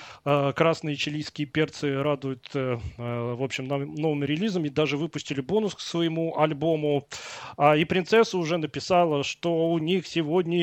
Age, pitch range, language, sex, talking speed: 30-49, 145-180 Hz, Russian, male, 125 wpm